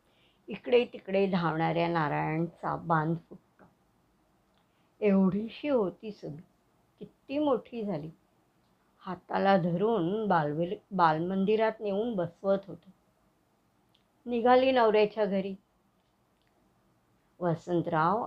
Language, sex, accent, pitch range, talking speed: Marathi, male, native, 165-205 Hz, 75 wpm